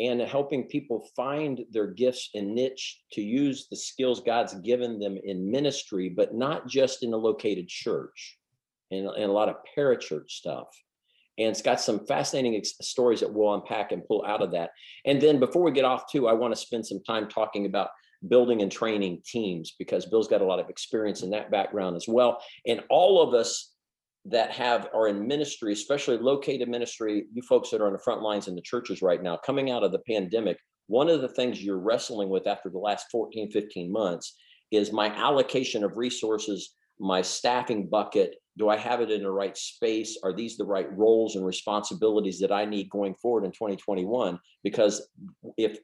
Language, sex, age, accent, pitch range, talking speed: English, male, 50-69, American, 105-130 Hz, 200 wpm